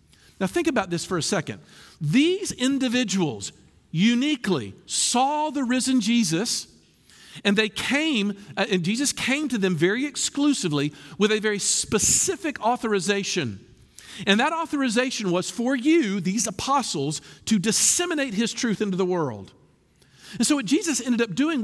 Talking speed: 145 wpm